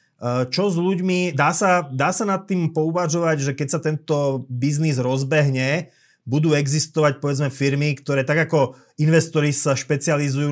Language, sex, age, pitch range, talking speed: Slovak, male, 30-49, 135-155 Hz, 150 wpm